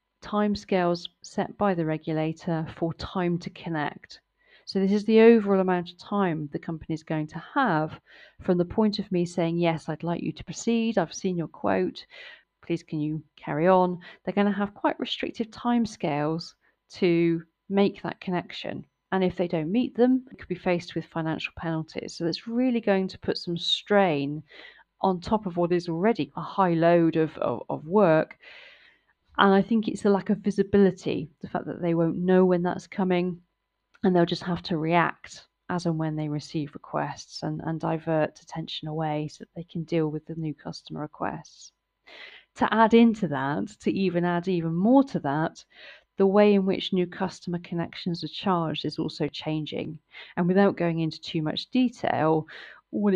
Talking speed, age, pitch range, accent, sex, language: 185 wpm, 40-59, 160-195 Hz, British, female, English